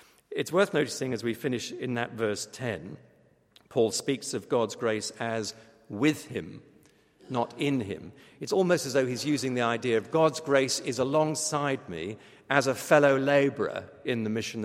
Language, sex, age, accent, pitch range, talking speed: English, male, 50-69, British, 110-135 Hz, 170 wpm